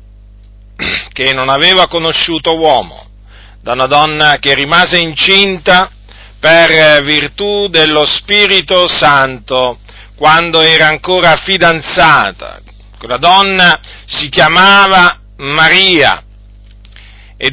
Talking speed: 90 wpm